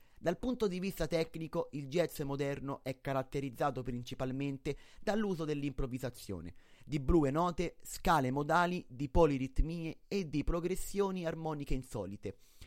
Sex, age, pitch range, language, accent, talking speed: male, 30-49, 130-170 Hz, Italian, native, 120 wpm